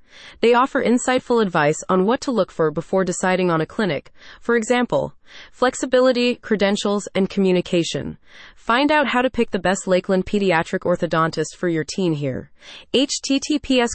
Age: 30-49